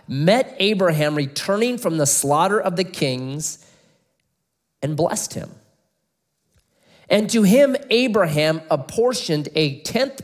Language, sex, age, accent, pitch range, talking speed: English, male, 30-49, American, 155-210 Hz, 110 wpm